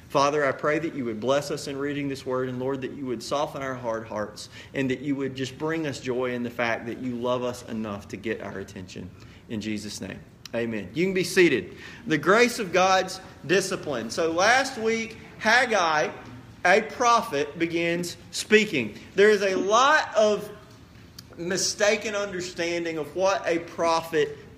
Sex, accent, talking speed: male, American, 180 wpm